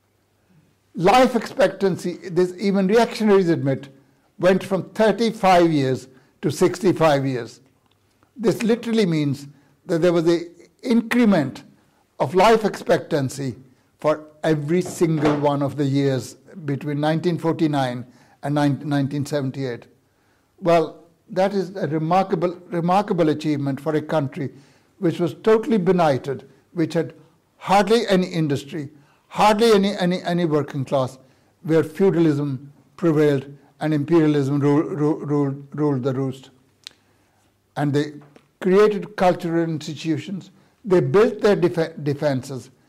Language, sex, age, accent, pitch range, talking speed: English, male, 60-79, Indian, 140-180 Hz, 110 wpm